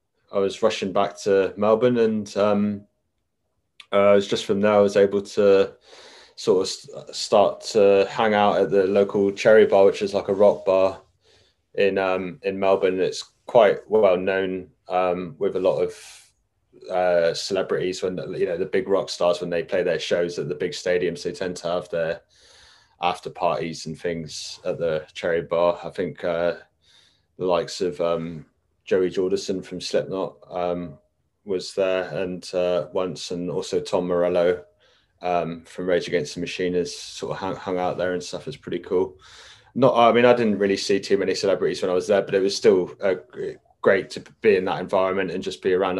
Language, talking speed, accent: English, 190 wpm, British